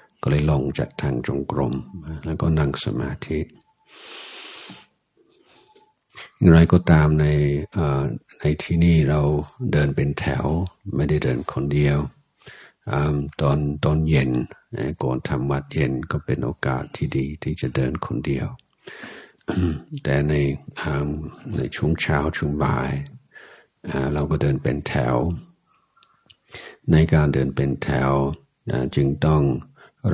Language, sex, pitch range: Thai, male, 70-80 Hz